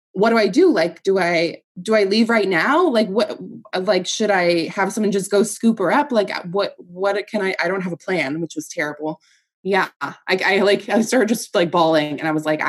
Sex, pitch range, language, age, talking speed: female, 170-220 Hz, English, 20-39, 235 wpm